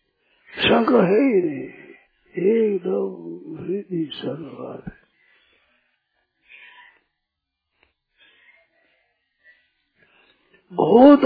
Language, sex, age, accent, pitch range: Hindi, male, 50-69, native, 170-265 Hz